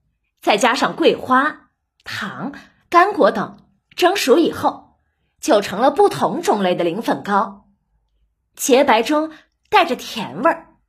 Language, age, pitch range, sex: Chinese, 20-39, 230-330 Hz, female